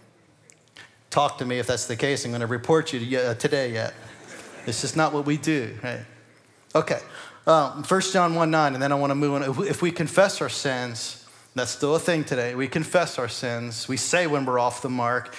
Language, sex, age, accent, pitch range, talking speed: English, male, 40-59, American, 125-150 Hz, 215 wpm